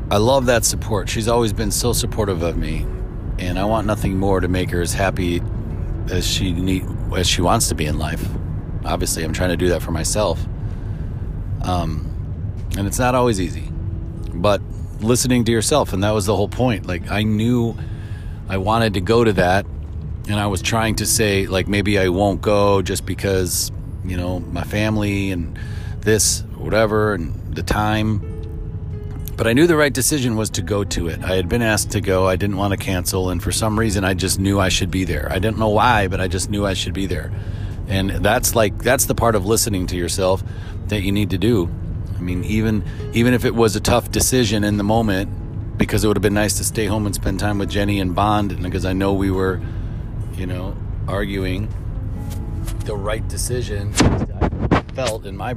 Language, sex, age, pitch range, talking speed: English, male, 40-59, 90-110 Hz, 205 wpm